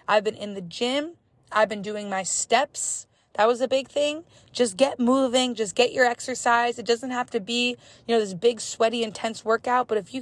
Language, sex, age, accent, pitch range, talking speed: English, female, 20-39, American, 200-255 Hz, 215 wpm